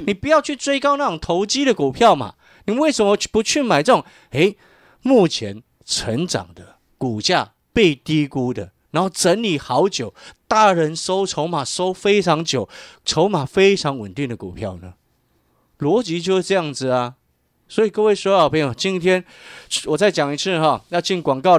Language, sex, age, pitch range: Chinese, male, 30-49, 140-195 Hz